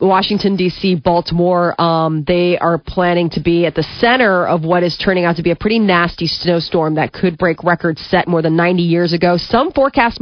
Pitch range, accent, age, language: 170-205 Hz, American, 30-49, English